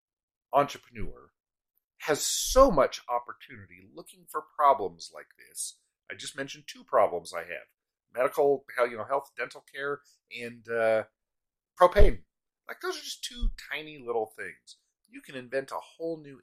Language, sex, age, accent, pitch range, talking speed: English, male, 40-59, American, 105-150 Hz, 145 wpm